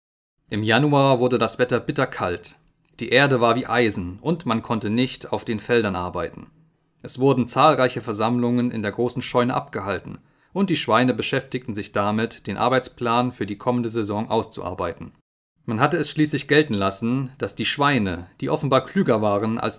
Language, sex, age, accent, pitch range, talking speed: German, male, 30-49, German, 110-140 Hz, 165 wpm